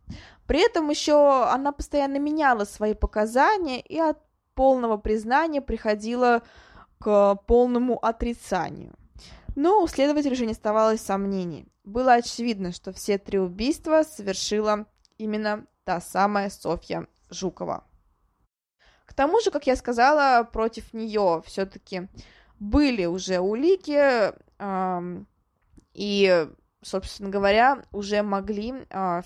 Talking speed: 110 wpm